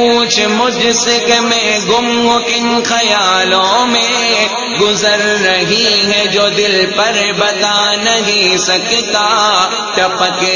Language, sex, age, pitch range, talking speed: English, male, 30-49, 185-230 Hz, 110 wpm